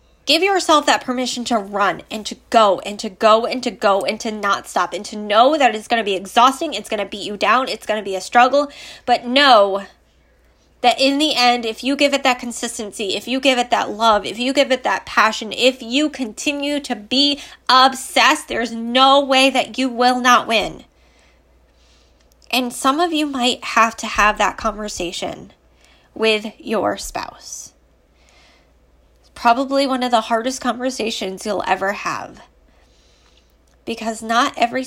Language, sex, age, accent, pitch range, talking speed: English, female, 10-29, American, 200-260 Hz, 175 wpm